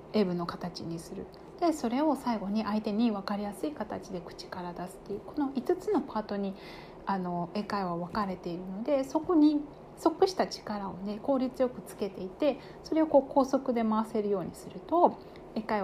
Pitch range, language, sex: 195-255 Hz, Japanese, female